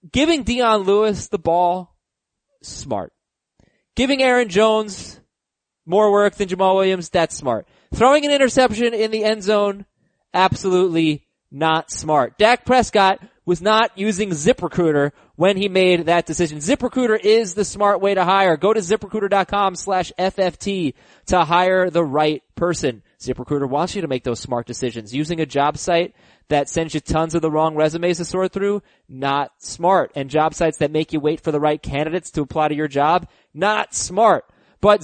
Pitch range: 150-205 Hz